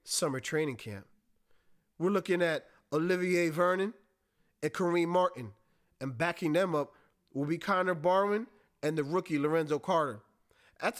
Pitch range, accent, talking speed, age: 165-205 Hz, American, 135 wpm, 30-49